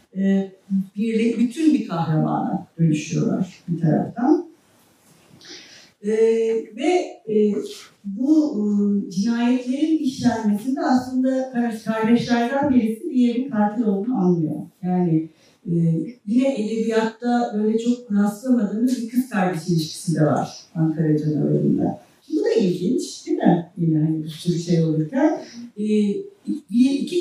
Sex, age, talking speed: female, 60-79, 110 wpm